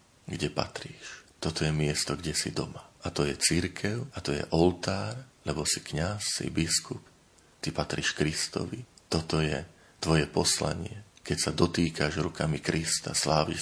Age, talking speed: 40-59, 150 wpm